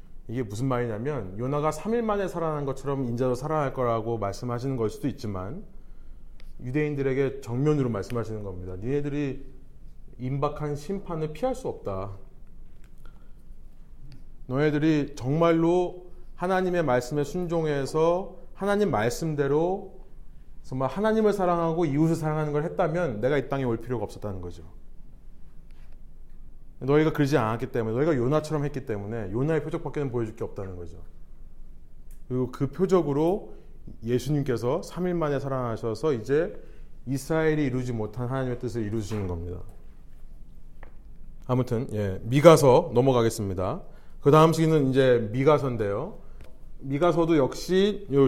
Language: Korean